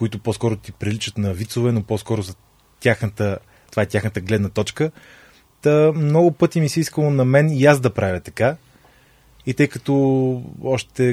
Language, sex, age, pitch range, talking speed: Bulgarian, male, 30-49, 105-135 Hz, 175 wpm